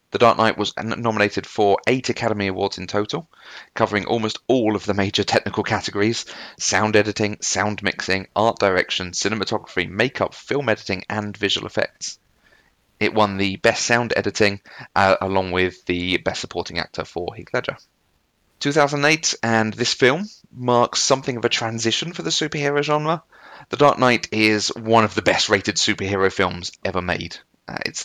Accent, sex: British, male